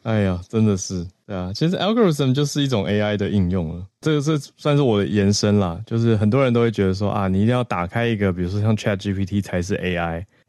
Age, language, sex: 20-39, Chinese, male